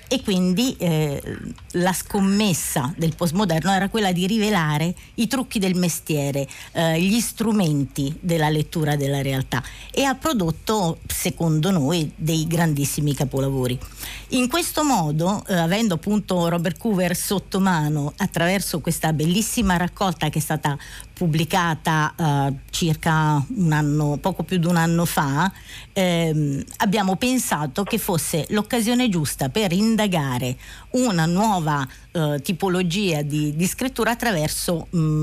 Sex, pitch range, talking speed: female, 150-200 Hz, 125 wpm